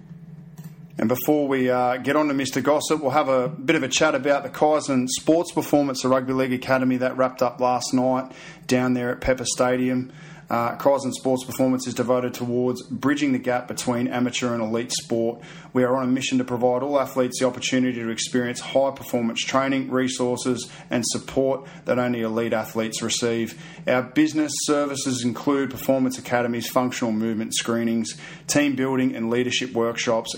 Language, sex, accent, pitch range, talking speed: English, male, Australian, 120-140 Hz, 170 wpm